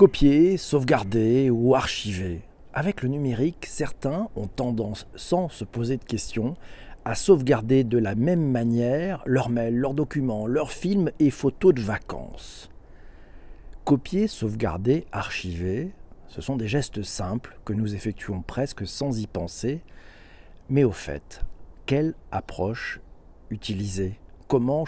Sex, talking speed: male, 130 wpm